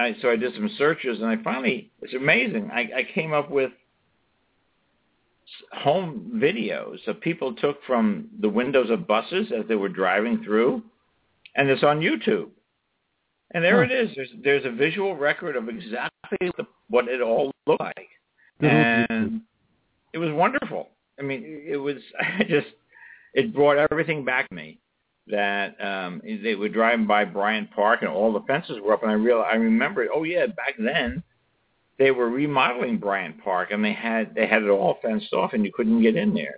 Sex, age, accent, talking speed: male, 60-79, American, 180 wpm